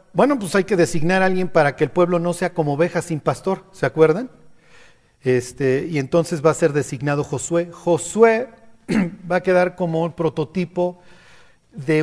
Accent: Mexican